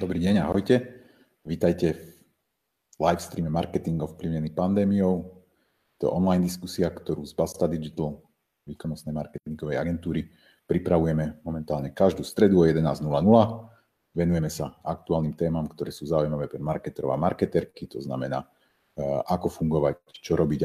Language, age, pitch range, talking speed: Slovak, 40-59, 75-90 Hz, 130 wpm